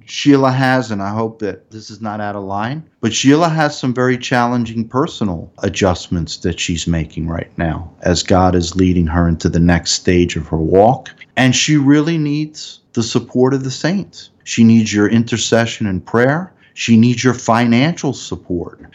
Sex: male